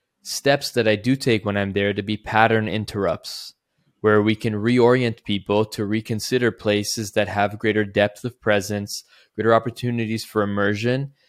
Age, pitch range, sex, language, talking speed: 20-39, 105-120 Hz, male, English, 160 wpm